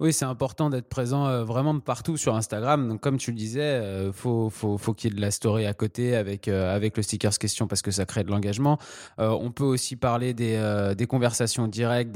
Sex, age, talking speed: male, 20-39, 245 wpm